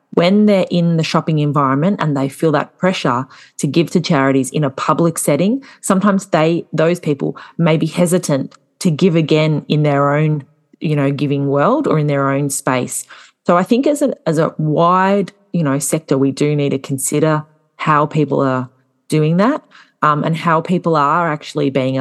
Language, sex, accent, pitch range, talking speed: English, female, Australian, 140-175 Hz, 190 wpm